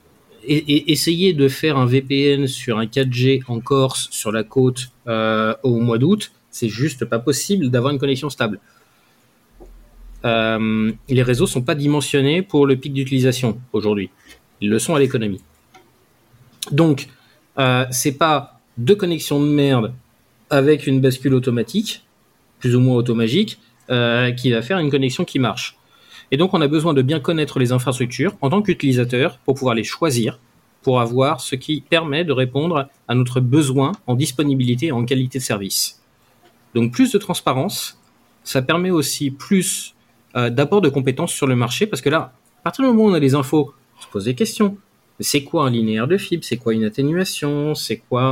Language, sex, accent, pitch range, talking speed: French, male, French, 120-150 Hz, 180 wpm